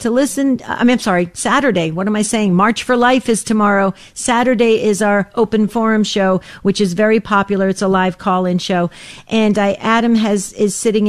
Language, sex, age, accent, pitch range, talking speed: English, female, 50-69, American, 200-245 Hz, 200 wpm